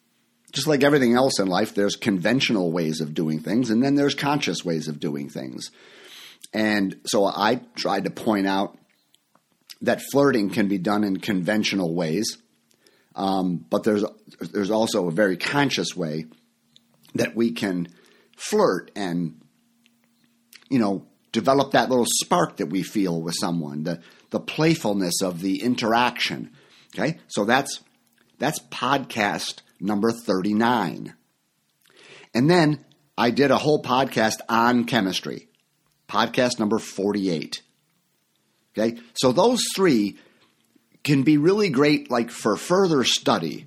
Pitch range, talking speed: 90-135 Hz, 135 wpm